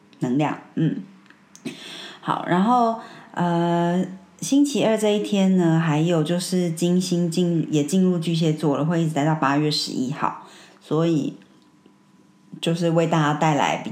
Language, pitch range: Chinese, 150-185 Hz